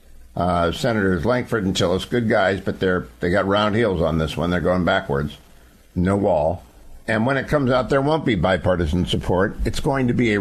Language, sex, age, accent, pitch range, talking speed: English, male, 60-79, American, 90-125 Hz, 210 wpm